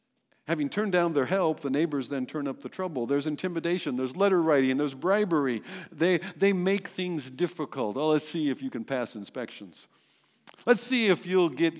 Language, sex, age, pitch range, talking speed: English, male, 60-79, 130-195 Hz, 190 wpm